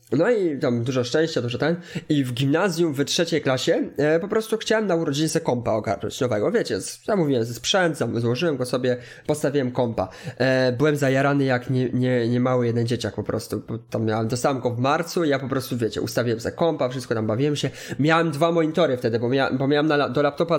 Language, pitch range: Polish, 125-165 Hz